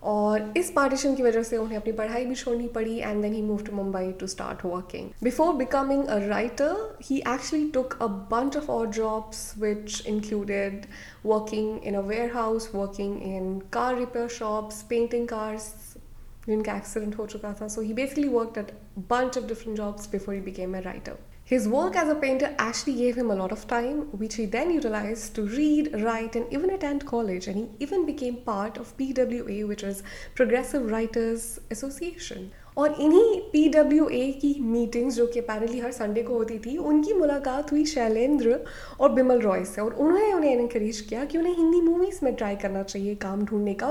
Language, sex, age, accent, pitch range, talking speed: English, female, 20-39, Indian, 215-275 Hz, 170 wpm